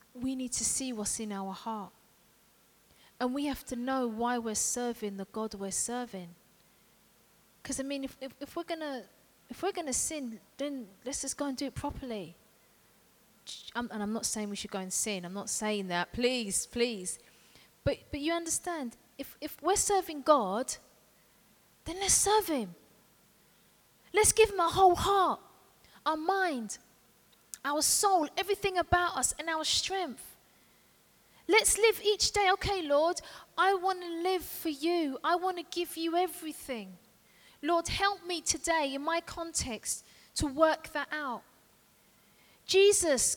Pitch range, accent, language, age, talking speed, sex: 245-365 Hz, British, English, 30-49, 155 wpm, female